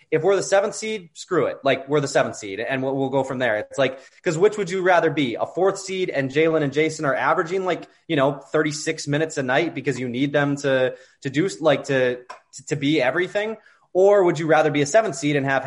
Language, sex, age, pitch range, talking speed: English, male, 20-39, 130-165 Hz, 250 wpm